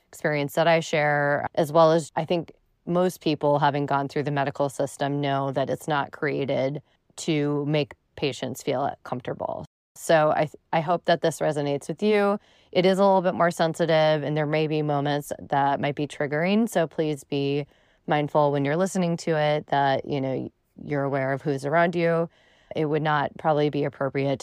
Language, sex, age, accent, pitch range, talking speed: English, female, 20-39, American, 150-175 Hz, 190 wpm